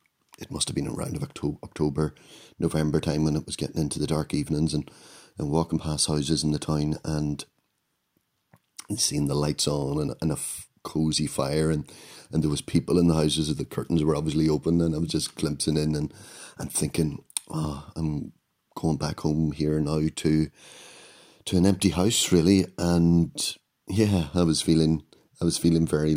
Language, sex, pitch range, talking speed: English, male, 75-85 Hz, 190 wpm